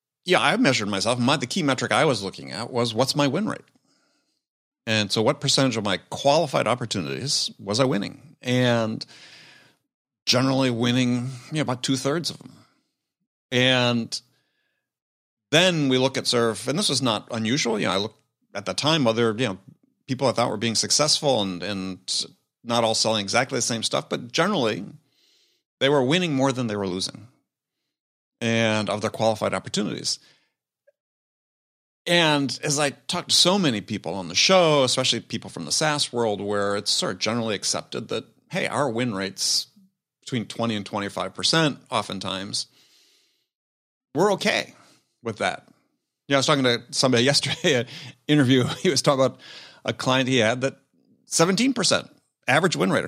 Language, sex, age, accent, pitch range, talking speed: English, male, 40-59, American, 110-140 Hz, 165 wpm